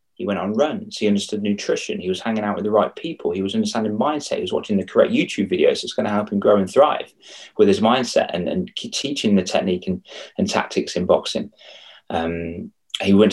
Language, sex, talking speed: English, male, 230 wpm